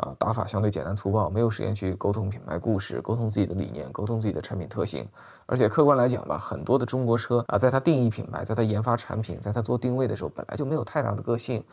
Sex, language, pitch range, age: male, Chinese, 105-140 Hz, 20-39